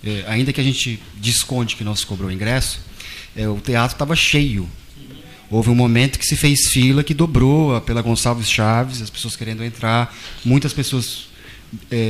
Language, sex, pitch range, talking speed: Portuguese, male, 110-140 Hz, 175 wpm